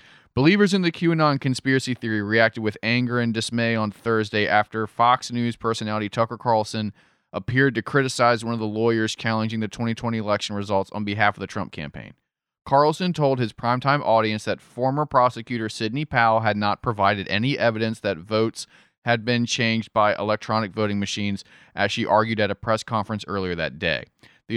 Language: English